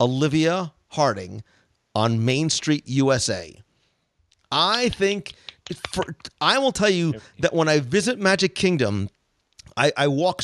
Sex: male